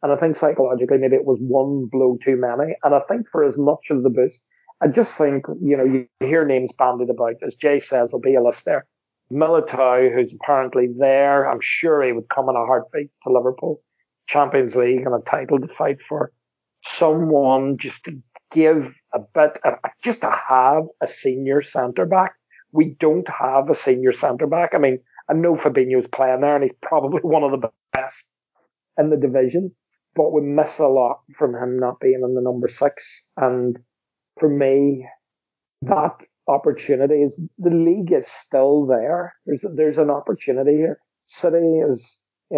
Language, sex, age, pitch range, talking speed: English, male, 40-59, 130-155 Hz, 180 wpm